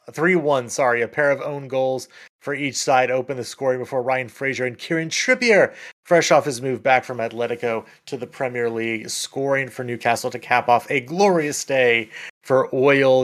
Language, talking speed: English, 180 wpm